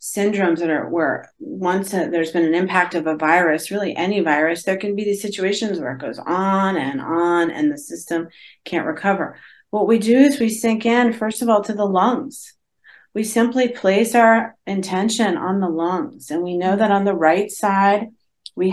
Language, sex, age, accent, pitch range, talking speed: English, female, 40-59, American, 165-205 Hz, 195 wpm